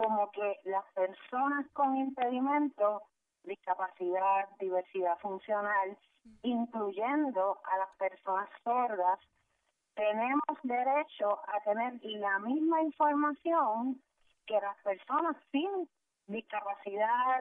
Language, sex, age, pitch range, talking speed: Spanish, female, 30-49, 200-270 Hz, 90 wpm